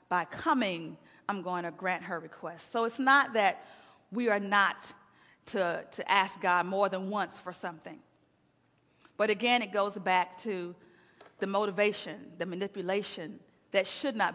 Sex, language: female, English